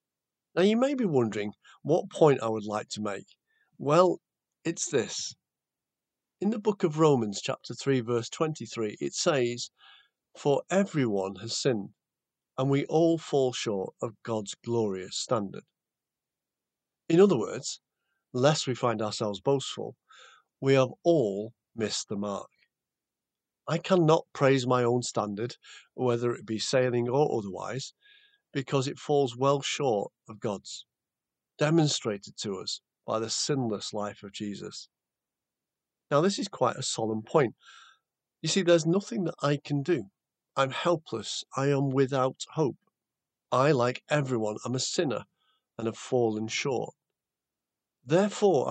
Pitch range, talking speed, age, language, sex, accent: 115-160 Hz, 140 wpm, 50-69, English, male, British